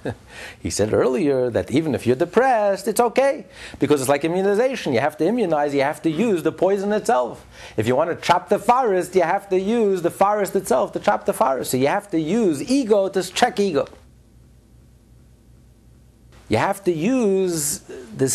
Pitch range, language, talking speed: 140-205 Hz, English, 185 wpm